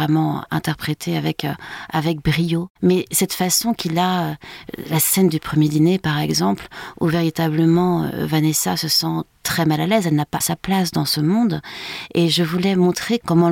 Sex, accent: female, French